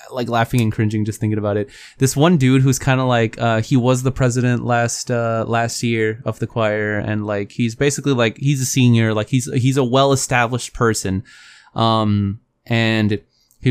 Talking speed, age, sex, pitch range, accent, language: 195 wpm, 20-39, male, 110-135 Hz, American, English